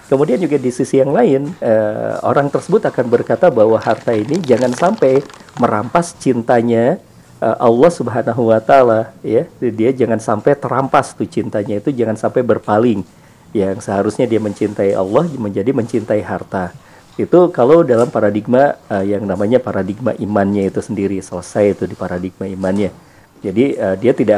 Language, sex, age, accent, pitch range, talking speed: Indonesian, male, 40-59, native, 105-140 Hz, 155 wpm